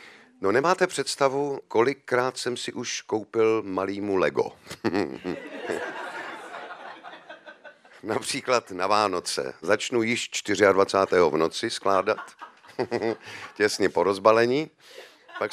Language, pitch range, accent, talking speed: Czech, 100-135 Hz, native, 90 wpm